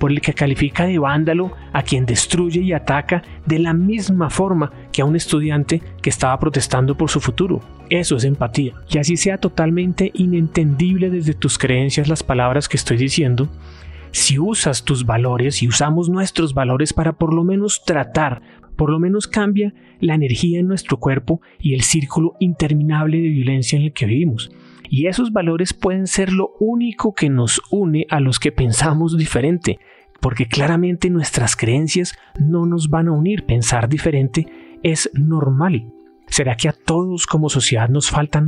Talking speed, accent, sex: 170 wpm, Colombian, male